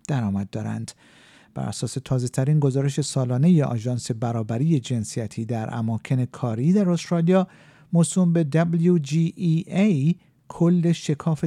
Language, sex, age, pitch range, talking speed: Persian, male, 50-69, 125-165 Hz, 110 wpm